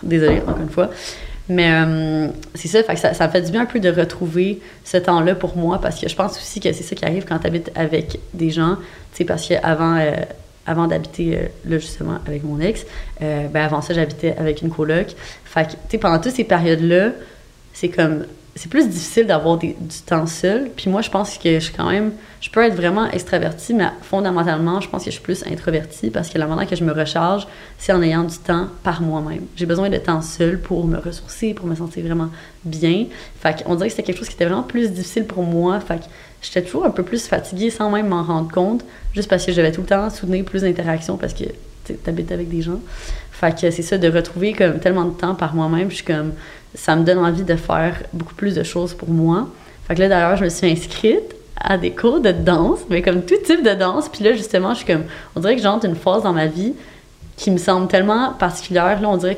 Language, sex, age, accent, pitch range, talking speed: French, female, 30-49, Canadian, 165-195 Hz, 245 wpm